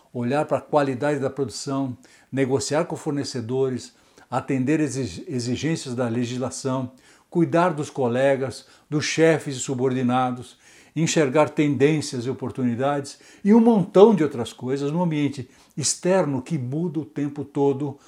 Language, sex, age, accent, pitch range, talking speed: Portuguese, male, 60-79, Brazilian, 130-165 Hz, 125 wpm